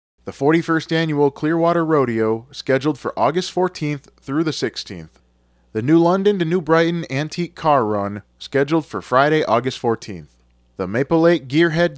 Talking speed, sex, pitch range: 150 wpm, male, 110-155 Hz